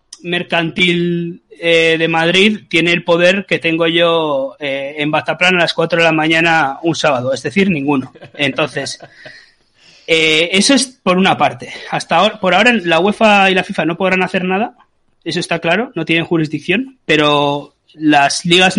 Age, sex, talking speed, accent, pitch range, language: 30-49, male, 170 wpm, Spanish, 155-190 Hz, Spanish